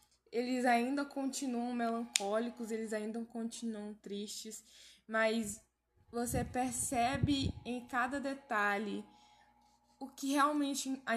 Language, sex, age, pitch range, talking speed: Portuguese, female, 10-29, 210-255 Hz, 95 wpm